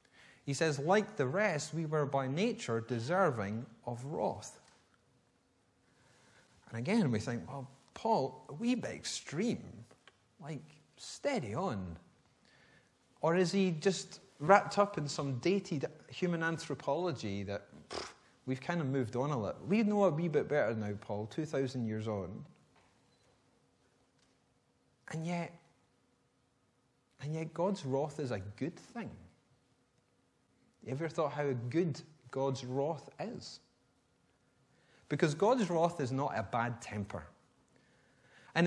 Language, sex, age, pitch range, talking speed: English, male, 30-49, 125-165 Hz, 130 wpm